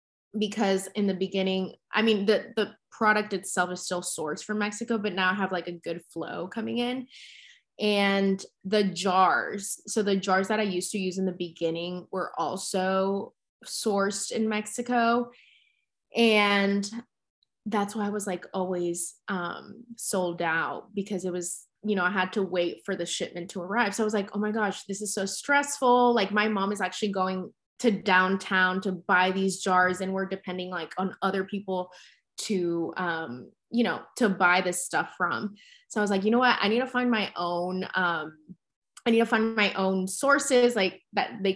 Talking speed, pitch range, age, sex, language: 190 wpm, 180-215 Hz, 20-39, female, English